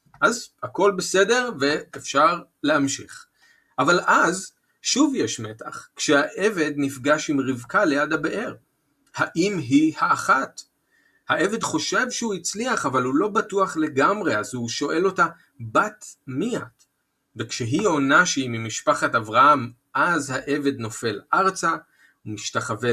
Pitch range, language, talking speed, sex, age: 130-190 Hz, Hebrew, 120 wpm, male, 40-59